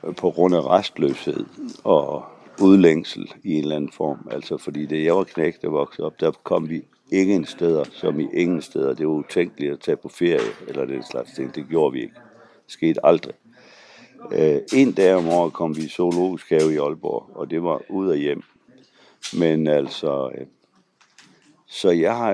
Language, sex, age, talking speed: Danish, male, 60-79, 185 wpm